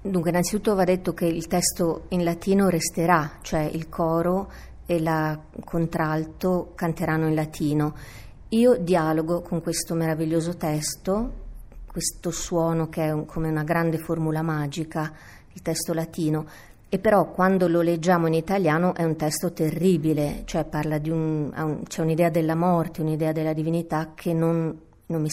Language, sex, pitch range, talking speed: Italian, female, 155-175 Hz, 150 wpm